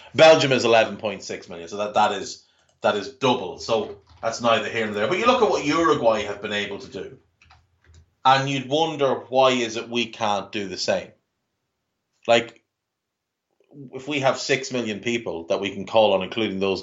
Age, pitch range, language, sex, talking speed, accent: 30-49, 95-130 Hz, English, male, 185 wpm, Irish